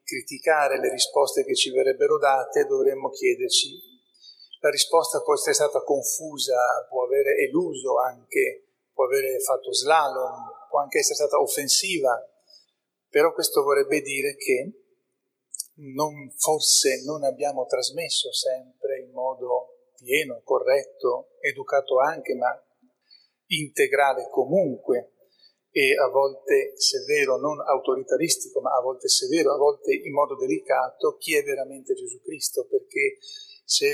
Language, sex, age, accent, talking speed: Italian, male, 40-59, native, 125 wpm